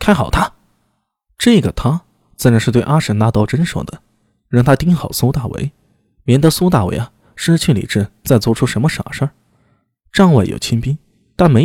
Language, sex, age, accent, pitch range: Chinese, male, 20-39, native, 105-150 Hz